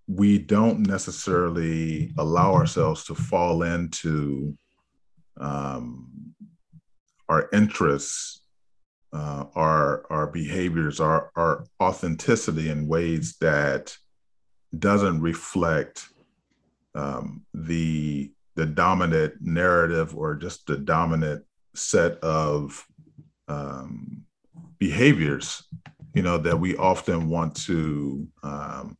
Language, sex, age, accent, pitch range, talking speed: English, male, 40-59, American, 75-95 Hz, 90 wpm